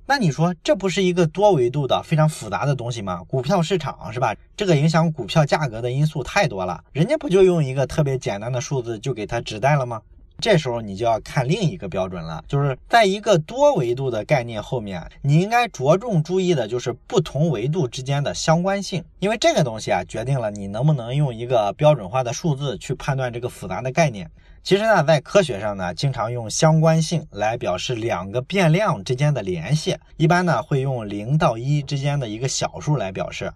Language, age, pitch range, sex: Chinese, 20-39, 125-175 Hz, male